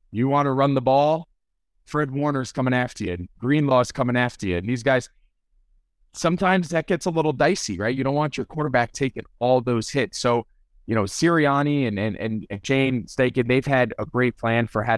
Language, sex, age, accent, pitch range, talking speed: English, male, 30-49, American, 105-125 Hz, 205 wpm